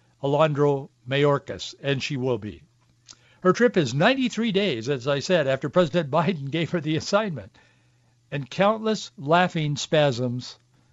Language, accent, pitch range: English, American, 125-170 Hz